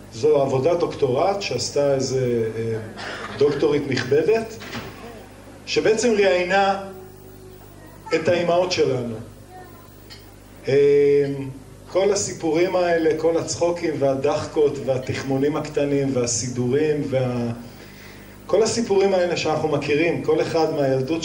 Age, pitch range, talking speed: 40-59, 125-165 Hz, 85 wpm